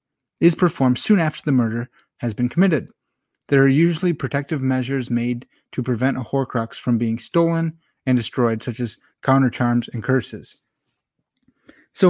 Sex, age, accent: male, 30-49, American